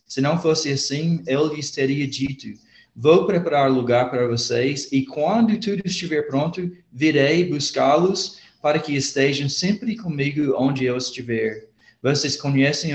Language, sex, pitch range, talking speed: Portuguese, male, 125-150 Hz, 140 wpm